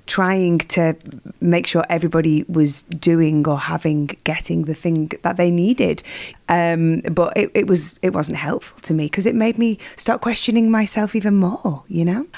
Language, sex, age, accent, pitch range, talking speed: English, female, 30-49, British, 160-185 Hz, 175 wpm